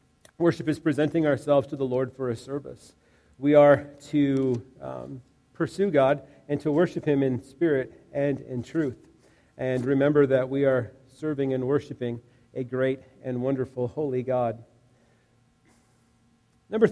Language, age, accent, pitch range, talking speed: English, 40-59, American, 130-165 Hz, 140 wpm